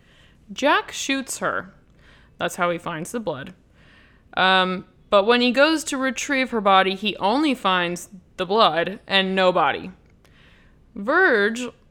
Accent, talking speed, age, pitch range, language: American, 135 wpm, 20-39, 180-245 Hz, English